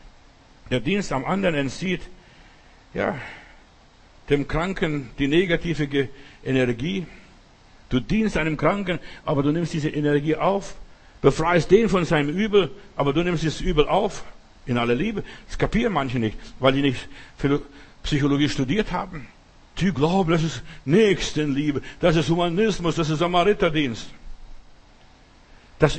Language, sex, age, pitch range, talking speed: German, male, 60-79, 135-180 Hz, 130 wpm